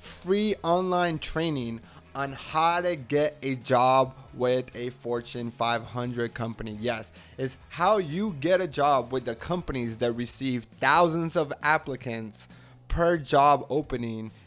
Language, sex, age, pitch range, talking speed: English, male, 20-39, 120-145 Hz, 135 wpm